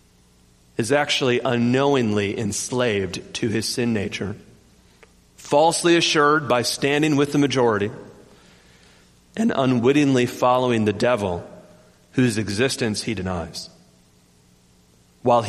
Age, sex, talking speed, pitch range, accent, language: 40-59, male, 95 wpm, 100-140 Hz, American, English